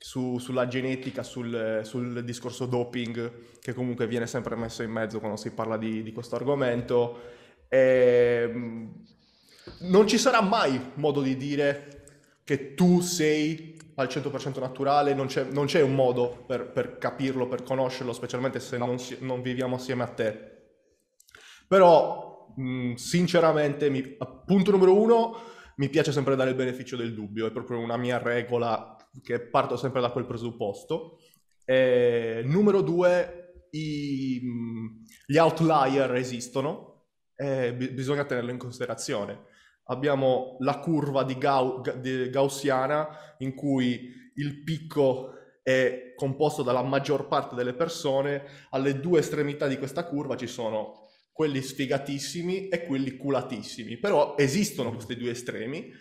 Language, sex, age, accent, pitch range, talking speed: Italian, male, 20-39, native, 120-145 Hz, 125 wpm